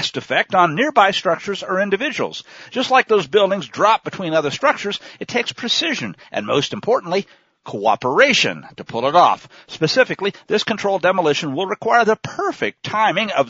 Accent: American